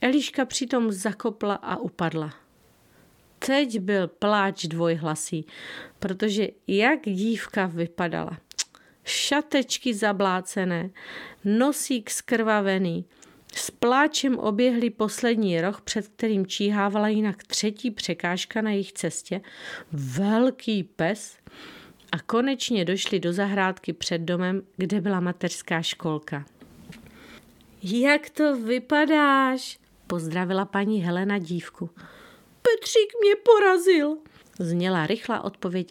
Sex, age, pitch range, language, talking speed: female, 40-59, 185-270 Hz, Czech, 95 wpm